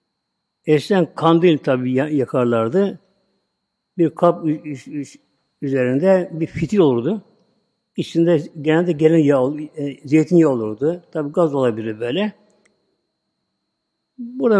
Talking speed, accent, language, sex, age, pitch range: 85 wpm, native, Turkish, male, 60-79, 140-180 Hz